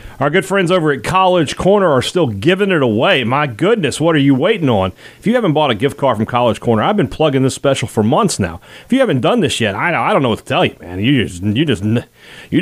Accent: American